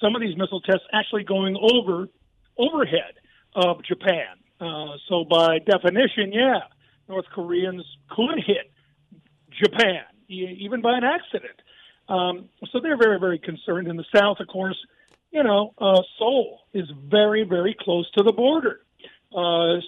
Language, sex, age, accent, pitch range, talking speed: English, male, 50-69, American, 180-215 Hz, 145 wpm